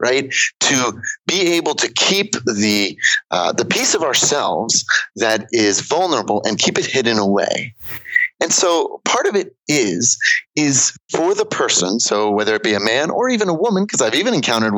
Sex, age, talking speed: male, 30-49, 180 wpm